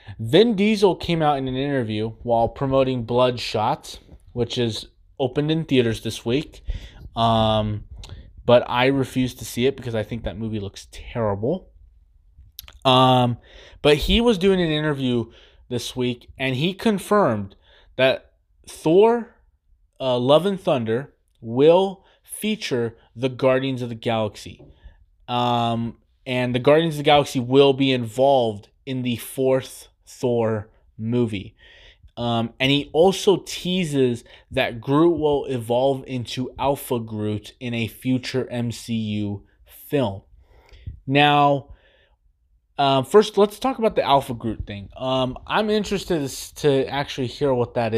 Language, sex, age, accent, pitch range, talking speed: English, male, 20-39, American, 110-140 Hz, 135 wpm